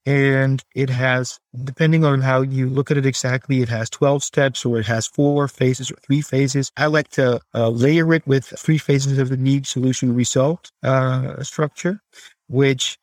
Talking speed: 185 wpm